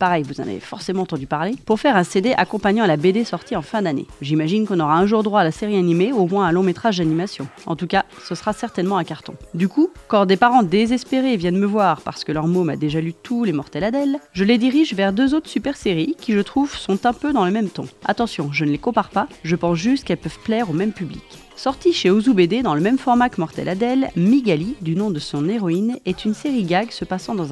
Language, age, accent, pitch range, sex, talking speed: French, 30-49, French, 170-230 Hz, female, 260 wpm